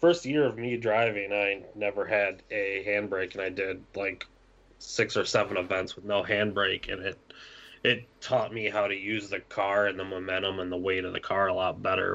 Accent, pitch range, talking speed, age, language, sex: American, 95-115 Hz, 210 wpm, 20-39, English, male